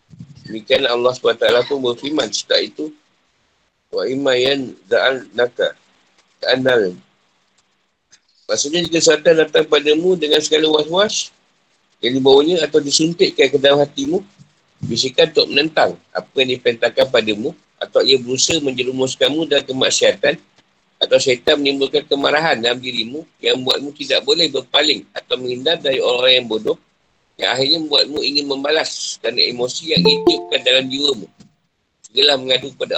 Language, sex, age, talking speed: Malay, male, 50-69, 120 wpm